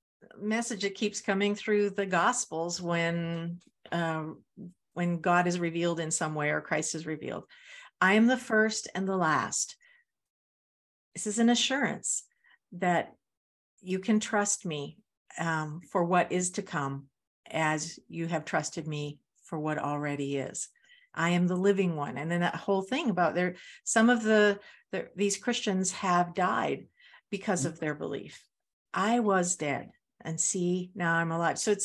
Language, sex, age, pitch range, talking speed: English, female, 50-69, 160-210 Hz, 160 wpm